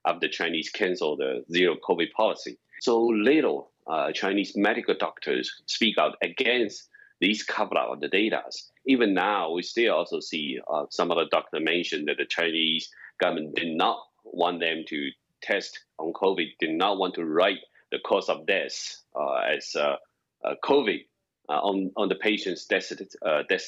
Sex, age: male, 30-49